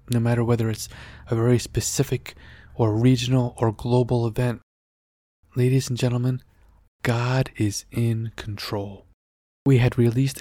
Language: English